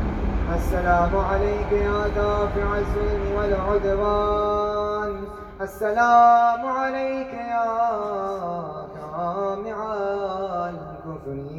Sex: male